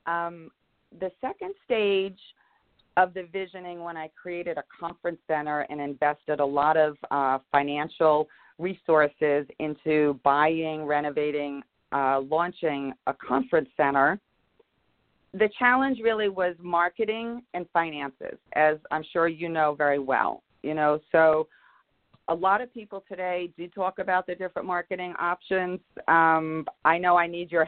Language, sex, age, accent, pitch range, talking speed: English, female, 40-59, American, 150-190 Hz, 140 wpm